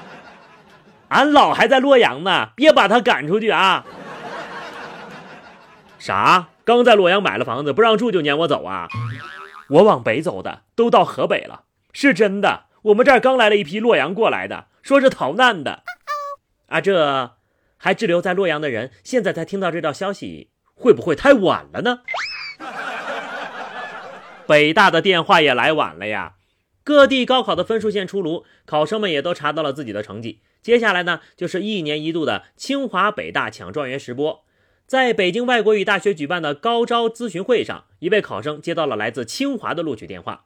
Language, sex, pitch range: Chinese, male, 150-250 Hz